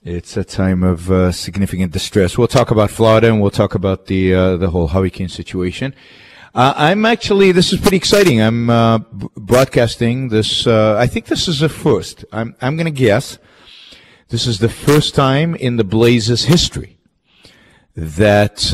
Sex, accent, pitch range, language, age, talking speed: male, American, 95-120 Hz, English, 50-69, 175 wpm